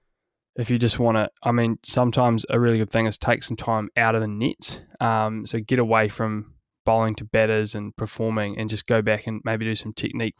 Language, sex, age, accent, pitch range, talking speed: English, male, 10-29, Australian, 105-115 Hz, 225 wpm